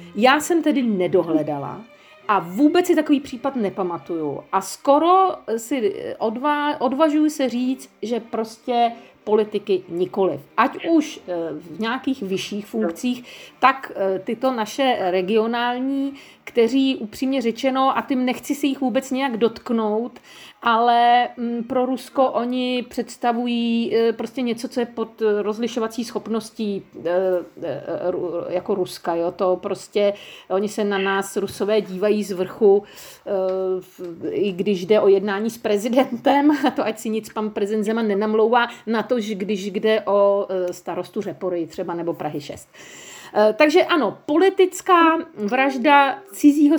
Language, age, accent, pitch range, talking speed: Czech, 50-69, native, 205-270 Hz, 125 wpm